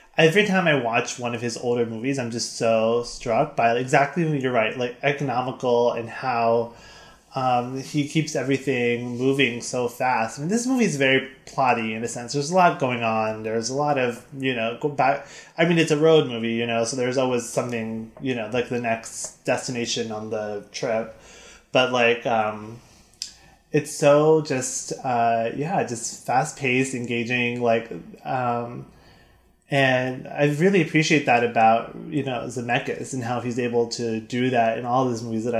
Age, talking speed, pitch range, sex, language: 20-39, 175 wpm, 115-135 Hz, male, English